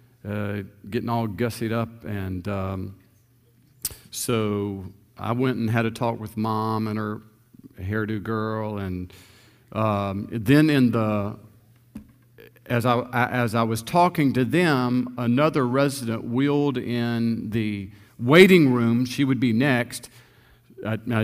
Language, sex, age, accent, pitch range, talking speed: English, male, 50-69, American, 110-125 Hz, 125 wpm